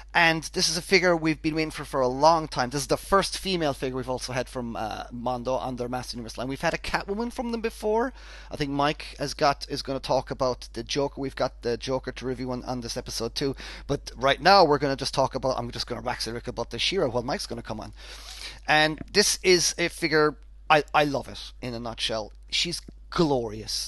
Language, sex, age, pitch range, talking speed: English, male, 30-49, 120-160 Hz, 245 wpm